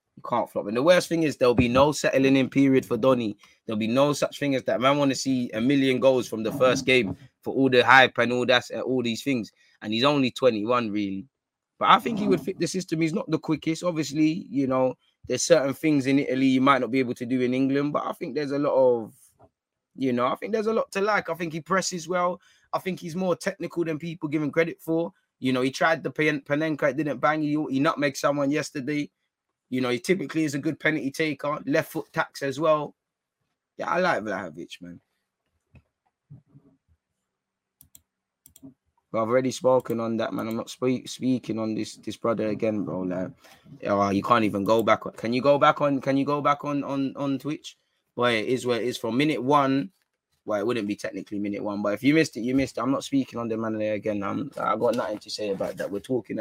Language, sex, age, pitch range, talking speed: English, male, 20-39, 120-155 Hz, 235 wpm